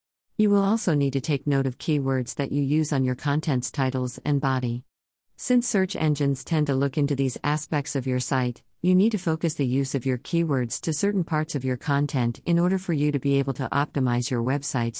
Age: 50-69